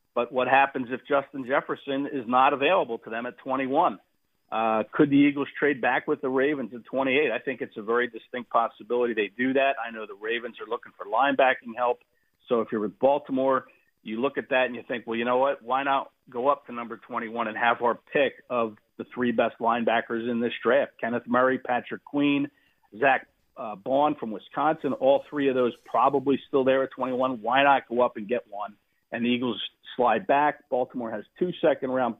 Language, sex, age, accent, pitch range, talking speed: English, male, 50-69, American, 115-135 Hz, 210 wpm